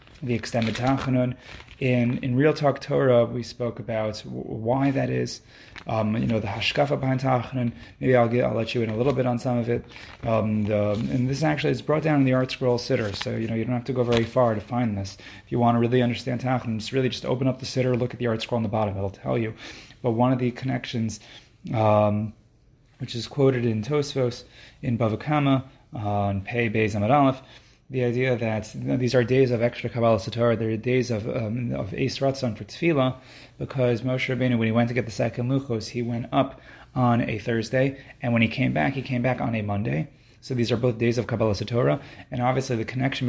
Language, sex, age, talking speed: English, male, 30-49, 230 wpm